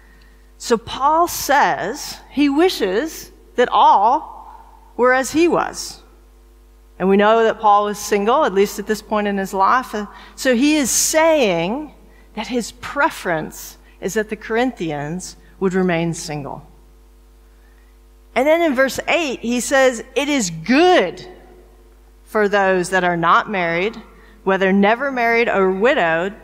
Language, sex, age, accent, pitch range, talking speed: English, female, 40-59, American, 195-270 Hz, 140 wpm